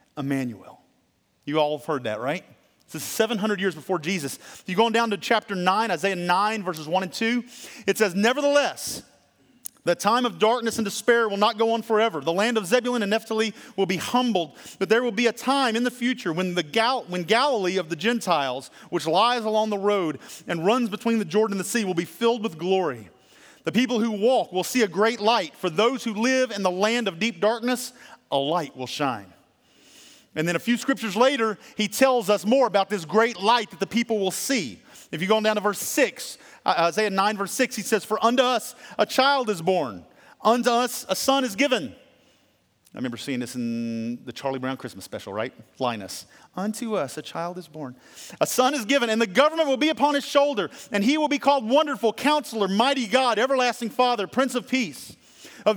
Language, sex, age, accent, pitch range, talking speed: English, male, 40-59, American, 185-245 Hz, 215 wpm